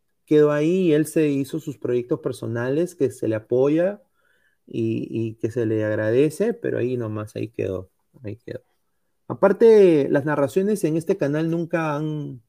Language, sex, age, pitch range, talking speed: Spanish, male, 30-49, 115-165 Hz, 165 wpm